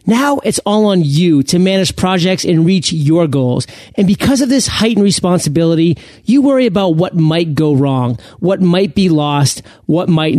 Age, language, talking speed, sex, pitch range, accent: 40-59, English, 180 wpm, male, 150-205 Hz, American